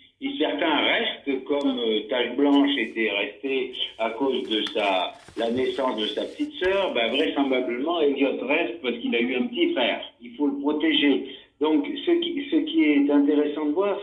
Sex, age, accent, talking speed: male, 60-79, French, 175 wpm